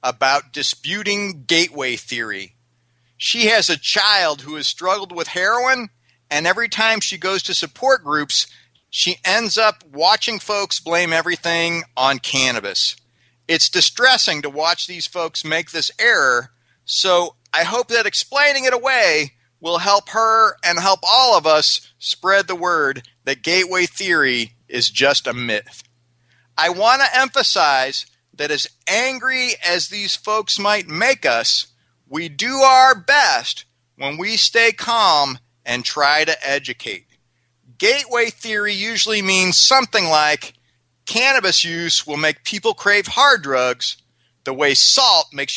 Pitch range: 135-225 Hz